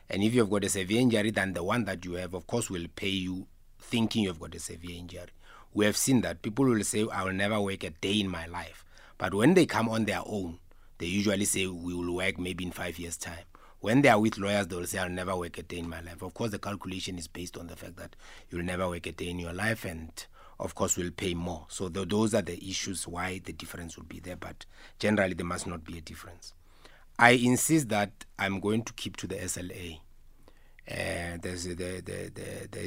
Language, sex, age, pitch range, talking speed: English, male, 30-49, 85-105 Hz, 235 wpm